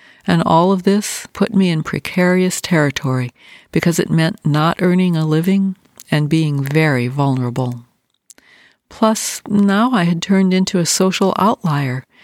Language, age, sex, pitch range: English, 60-79, female, 150-195 Hz